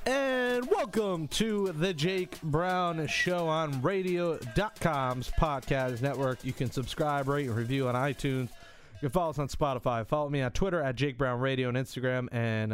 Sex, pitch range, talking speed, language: male, 110-150 Hz, 170 wpm, English